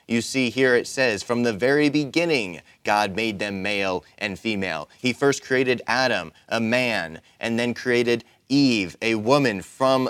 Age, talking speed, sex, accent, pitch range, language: 30-49, 165 wpm, male, American, 105-125 Hz, English